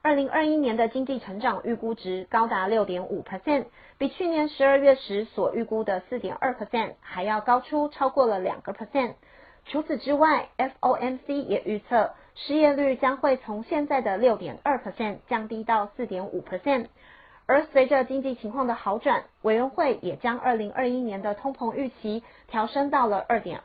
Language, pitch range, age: Chinese, 215-275 Hz, 30-49